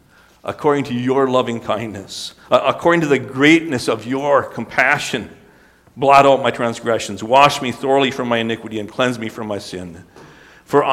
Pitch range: 105-135 Hz